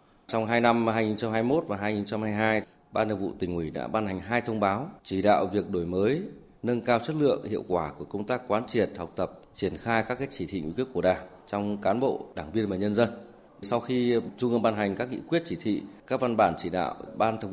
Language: Vietnamese